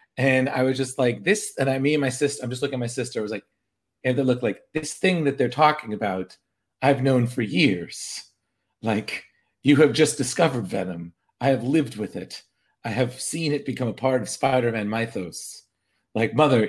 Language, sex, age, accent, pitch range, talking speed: English, male, 40-59, American, 110-145 Hz, 210 wpm